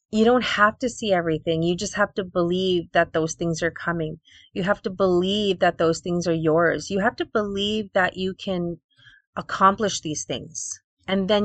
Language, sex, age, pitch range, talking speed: English, female, 30-49, 165-200 Hz, 195 wpm